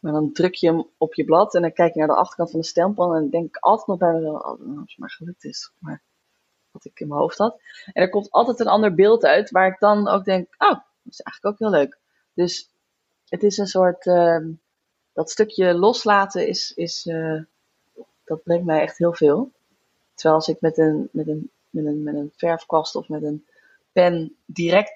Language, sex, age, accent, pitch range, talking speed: Dutch, female, 20-39, Dutch, 160-195 Hz, 230 wpm